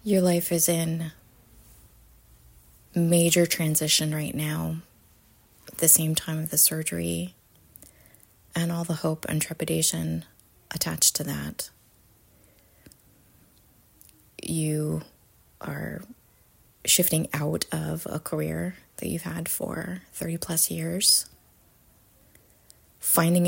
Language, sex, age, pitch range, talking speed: English, female, 20-39, 140-180 Hz, 100 wpm